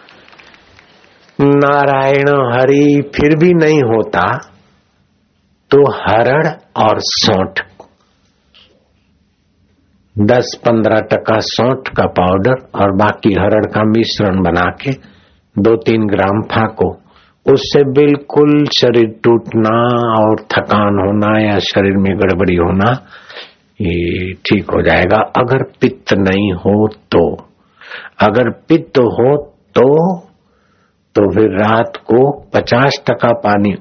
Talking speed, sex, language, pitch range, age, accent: 105 wpm, male, Hindi, 95-120 Hz, 60-79, native